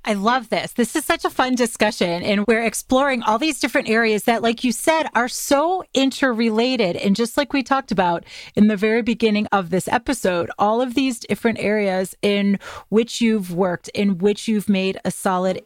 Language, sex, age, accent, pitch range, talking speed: English, female, 30-49, American, 185-230 Hz, 195 wpm